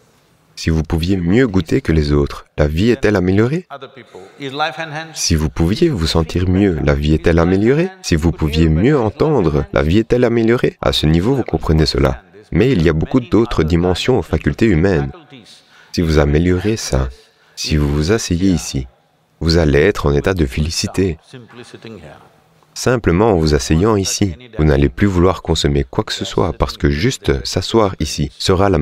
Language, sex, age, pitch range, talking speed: English, male, 30-49, 80-115 Hz, 175 wpm